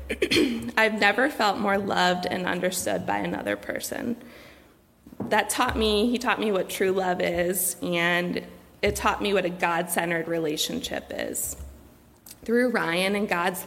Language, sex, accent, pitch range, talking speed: English, female, American, 180-225 Hz, 145 wpm